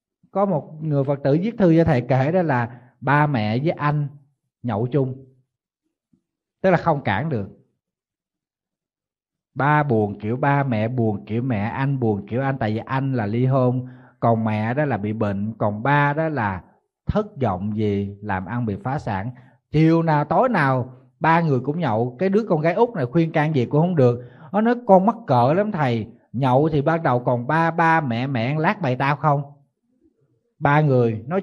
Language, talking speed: Vietnamese, 195 wpm